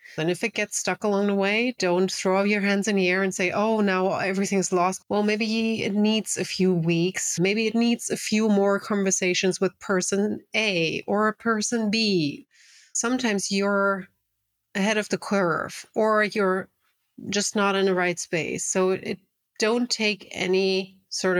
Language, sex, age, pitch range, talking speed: English, female, 30-49, 175-215 Hz, 170 wpm